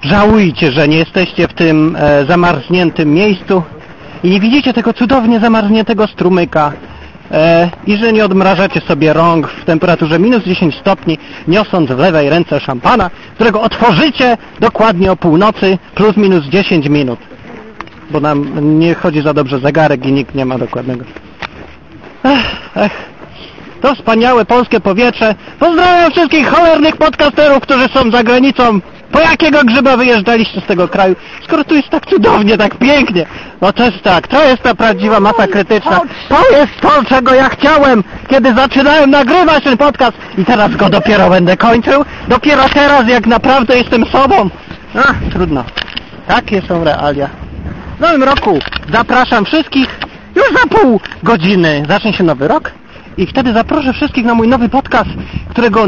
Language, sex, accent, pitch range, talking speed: Polish, male, native, 170-260 Hz, 150 wpm